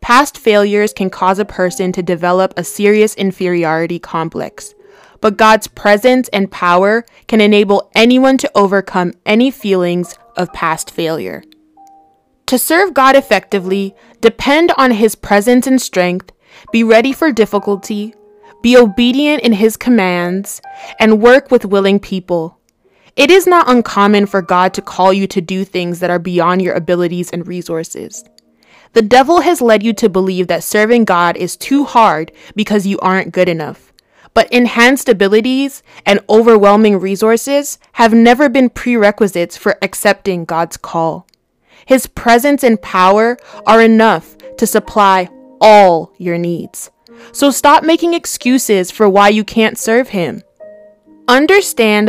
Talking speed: 145 wpm